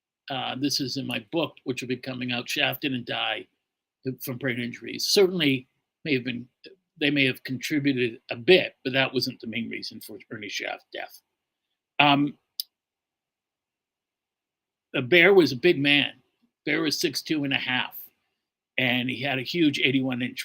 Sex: male